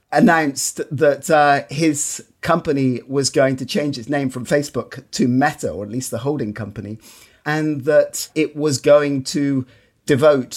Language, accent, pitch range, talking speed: English, British, 130-150 Hz, 160 wpm